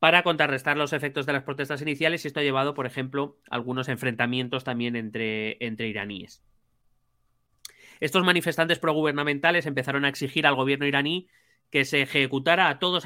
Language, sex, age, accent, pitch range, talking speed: Spanish, male, 30-49, Spanish, 120-145 Hz, 160 wpm